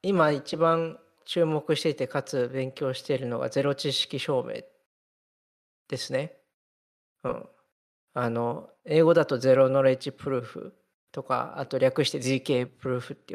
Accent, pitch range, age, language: native, 130-200 Hz, 40-59, Japanese